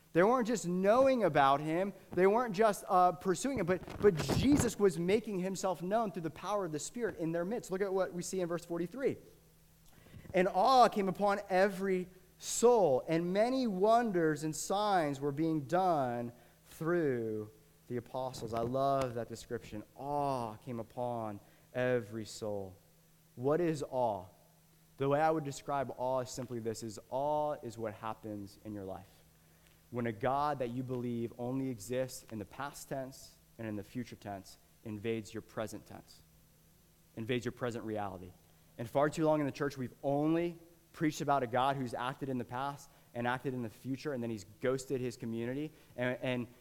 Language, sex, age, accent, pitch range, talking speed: English, male, 20-39, American, 120-165 Hz, 180 wpm